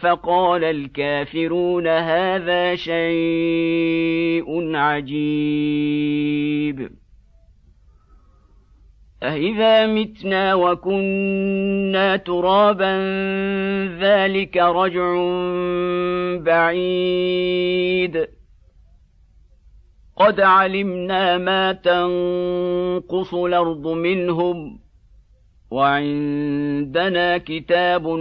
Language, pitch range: Arabic, 150-190 Hz